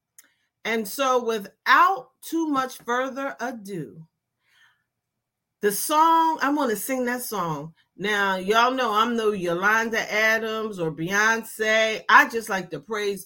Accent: American